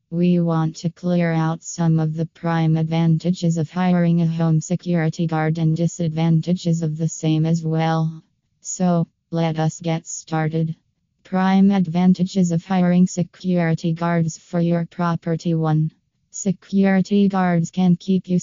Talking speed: 140 wpm